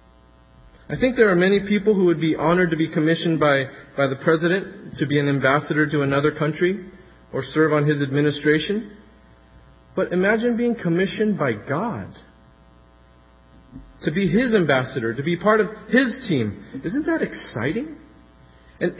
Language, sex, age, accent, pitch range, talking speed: English, male, 40-59, American, 150-215 Hz, 155 wpm